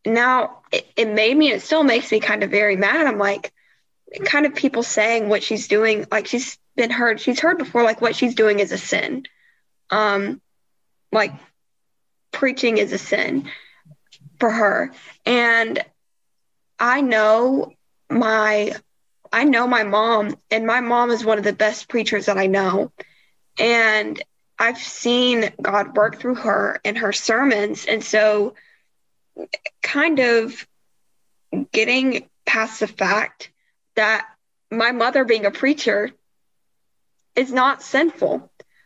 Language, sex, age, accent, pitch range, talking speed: English, female, 10-29, American, 210-250 Hz, 140 wpm